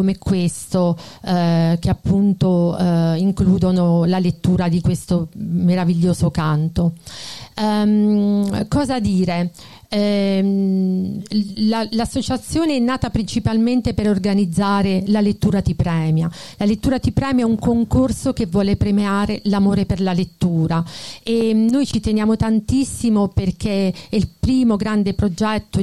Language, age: Italian, 40-59